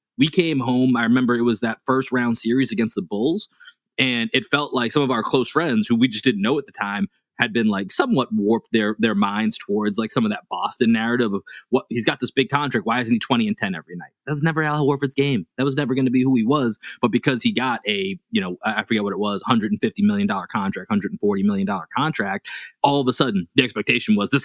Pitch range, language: 110-165 Hz, English